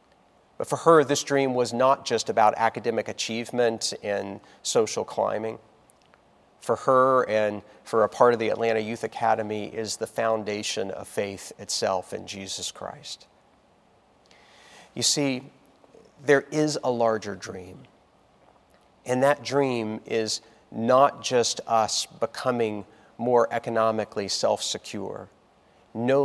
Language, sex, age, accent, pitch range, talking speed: English, male, 40-59, American, 105-130 Hz, 120 wpm